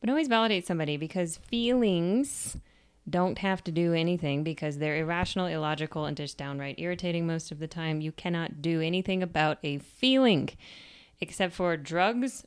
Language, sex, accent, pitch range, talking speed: English, female, American, 155-205 Hz, 160 wpm